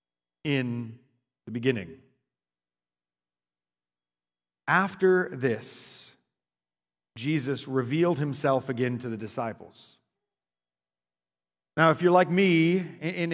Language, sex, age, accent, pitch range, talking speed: English, male, 40-59, American, 125-175 Hz, 80 wpm